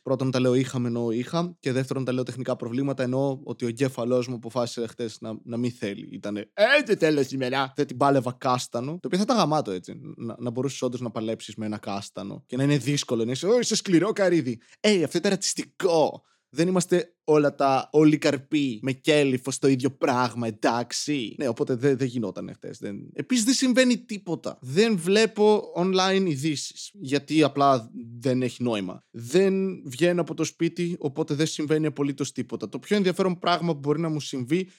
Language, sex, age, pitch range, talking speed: Greek, male, 20-39, 130-170 Hz, 195 wpm